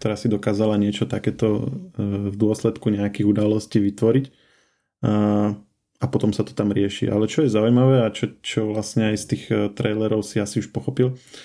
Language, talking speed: Slovak, 175 wpm